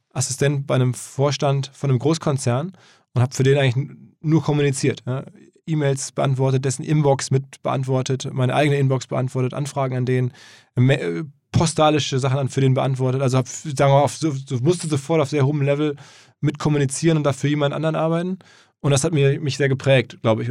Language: German